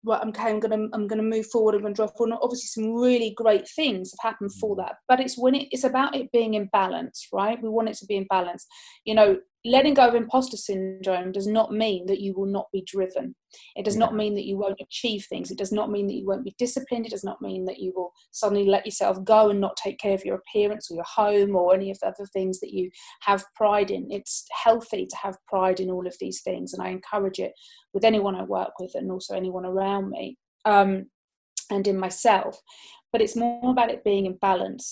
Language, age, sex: English, 30-49, female